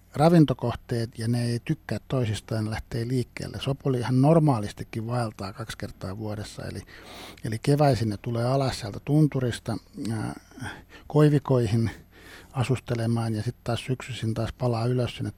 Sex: male